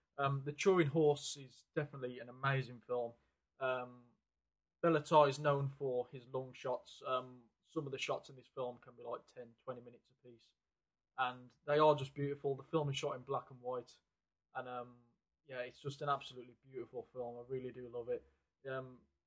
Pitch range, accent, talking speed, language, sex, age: 120-140 Hz, British, 185 wpm, English, male, 20-39